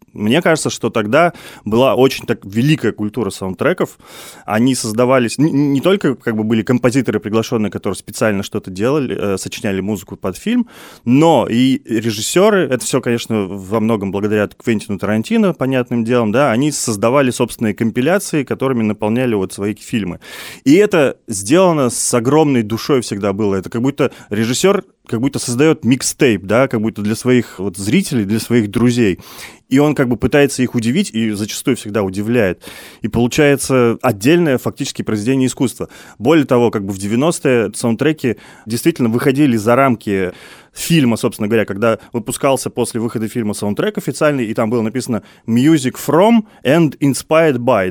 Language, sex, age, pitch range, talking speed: Russian, male, 20-39, 110-145 Hz, 155 wpm